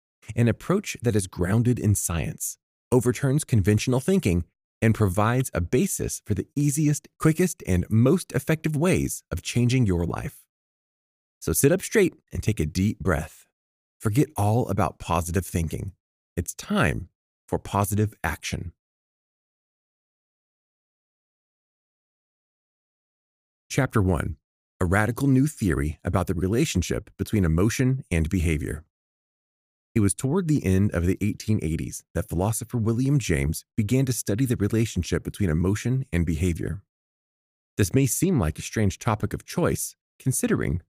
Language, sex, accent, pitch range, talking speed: English, male, American, 85-130 Hz, 130 wpm